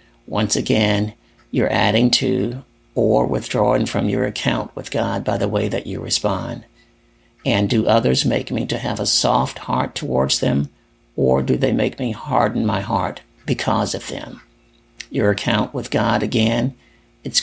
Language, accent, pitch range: English, American, 100-120 Hz